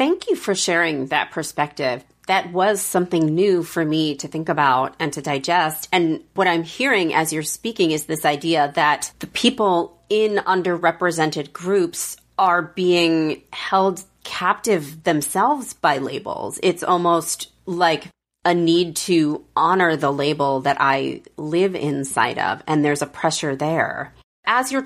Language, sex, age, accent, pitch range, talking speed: English, female, 30-49, American, 150-185 Hz, 150 wpm